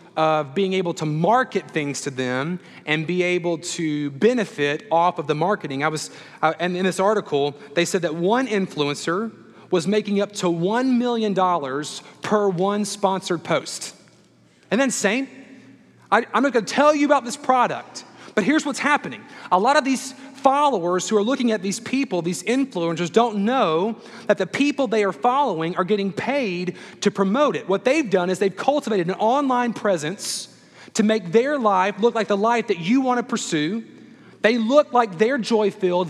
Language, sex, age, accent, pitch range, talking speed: English, male, 30-49, American, 180-255 Hz, 180 wpm